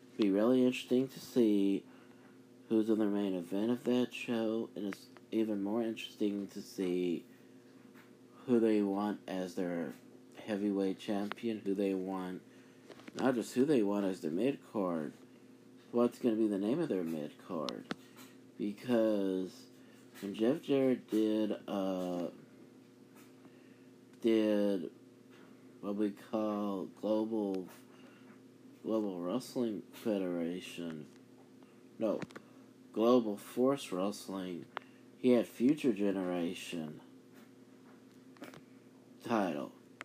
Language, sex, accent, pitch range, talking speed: English, male, American, 95-120 Hz, 110 wpm